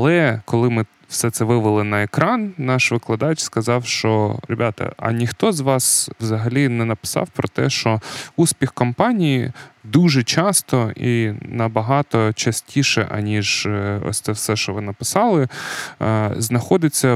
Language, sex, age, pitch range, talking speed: Ukrainian, male, 20-39, 110-135 Hz, 135 wpm